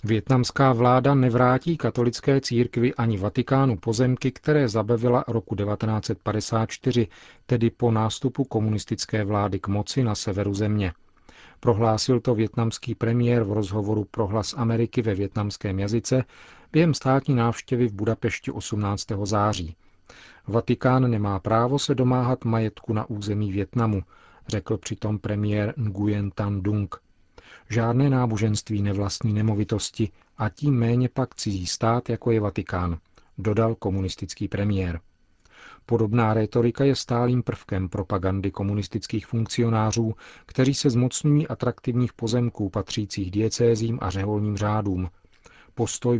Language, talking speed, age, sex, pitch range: Czech, 120 wpm, 40-59, male, 105-120 Hz